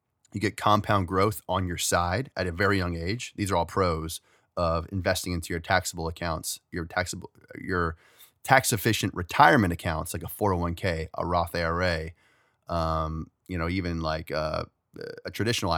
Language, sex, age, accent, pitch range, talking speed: English, male, 30-49, American, 90-110 Hz, 160 wpm